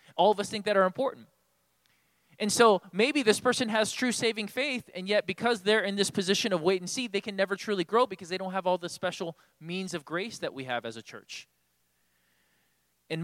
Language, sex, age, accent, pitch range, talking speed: English, male, 20-39, American, 145-200 Hz, 220 wpm